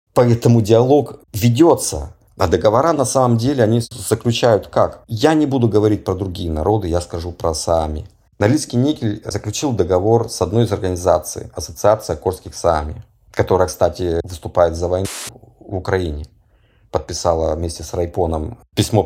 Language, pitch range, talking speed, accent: Russian, 90-115 Hz, 140 wpm, native